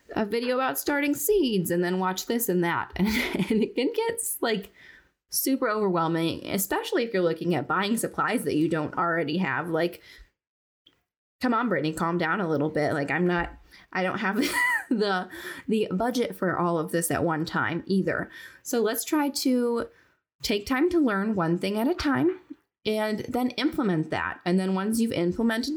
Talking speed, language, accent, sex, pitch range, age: 180 wpm, English, American, female, 170-235 Hz, 10-29